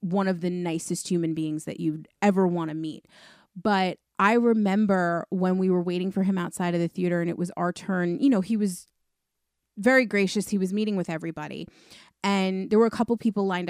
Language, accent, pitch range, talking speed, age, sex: English, American, 180-225 Hz, 210 wpm, 30-49, female